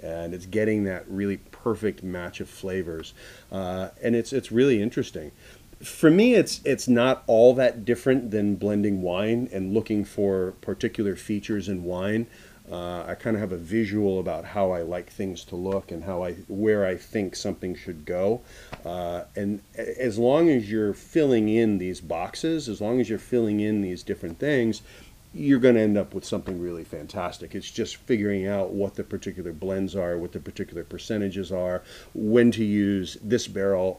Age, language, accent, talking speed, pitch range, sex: 30-49, English, American, 180 wpm, 95-110 Hz, male